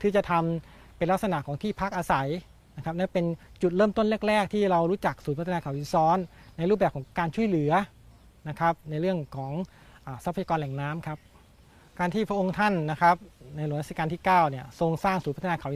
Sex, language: male, Thai